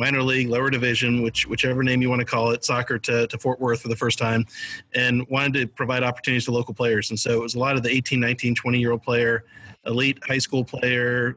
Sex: male